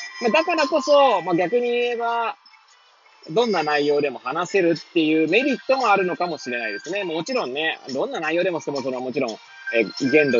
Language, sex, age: Japanese, male, 20-39